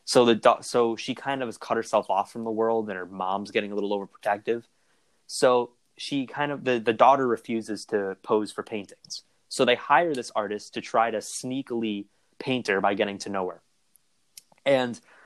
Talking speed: 195 wpm